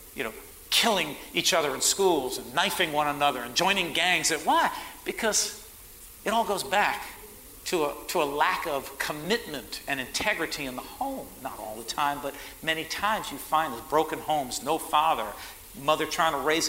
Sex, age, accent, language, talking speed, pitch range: male, 50-69, American, English, 185 wpm, 130-185 Hz